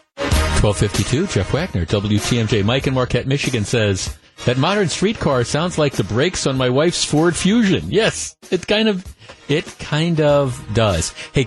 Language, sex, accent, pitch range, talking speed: English, male, American, 105-140 Hz, 155 wpm